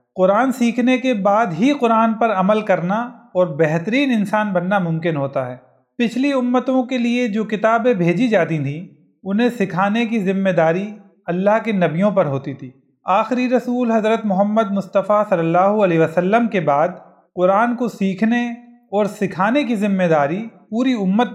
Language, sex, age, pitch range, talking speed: Urdu, male, 40-59, 180-235 Hz, 160 wpm